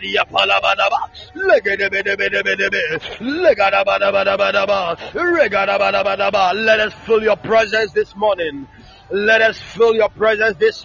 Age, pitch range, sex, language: 40-59, 195-220 Hz, male, English